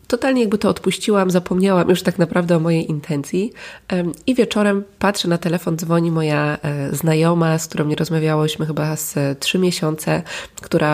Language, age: Polish, 20-39